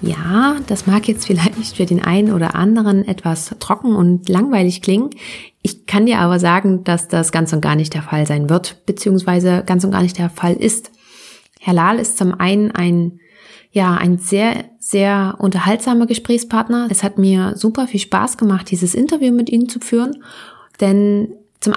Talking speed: 180 wpm